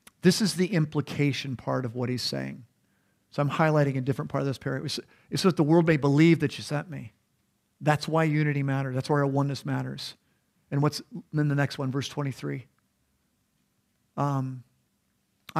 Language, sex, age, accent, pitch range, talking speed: English, male, 50-69, American, 130-160 Hz, 175 wpm